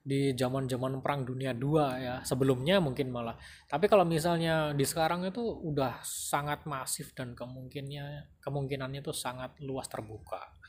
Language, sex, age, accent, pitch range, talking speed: Indonesian, male, 20-39, native, 125-155 Hz, 145 wpm